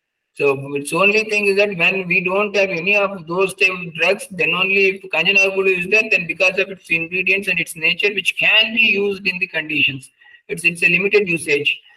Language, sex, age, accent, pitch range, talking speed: English, male, 50-69, Indian, 165-205 Hz, 205 wpm